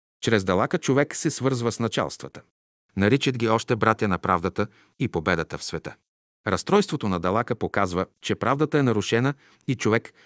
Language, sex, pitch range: Bulgarian, male, 95-125 Hz